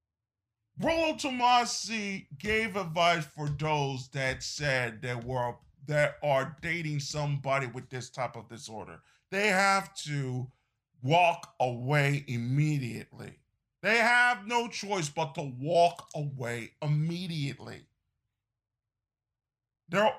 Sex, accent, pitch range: male, American, 140-180 Hz